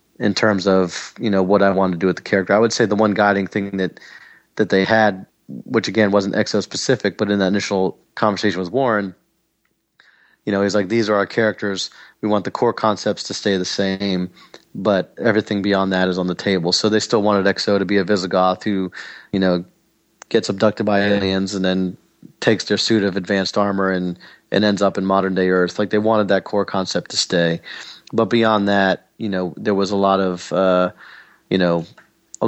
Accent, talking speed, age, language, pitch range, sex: American, 210 wpm, 30-49, English, 95-105 Hz, male